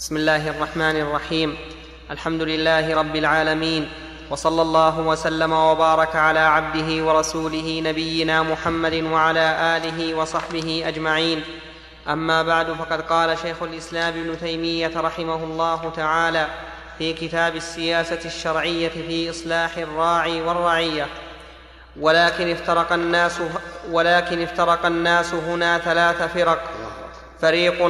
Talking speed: 110 wpm